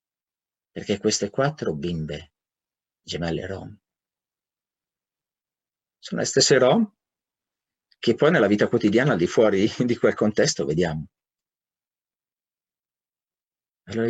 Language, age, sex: Italian, 50-69, male